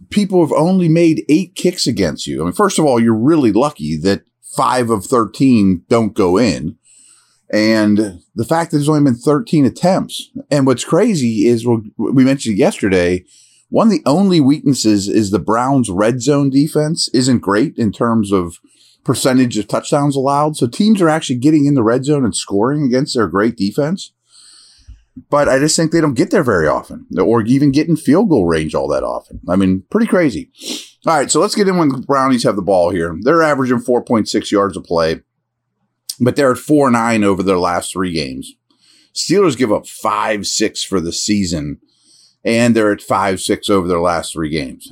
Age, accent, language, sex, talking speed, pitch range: 30-49, American, English, male, 190 wpm, 105-150 Hz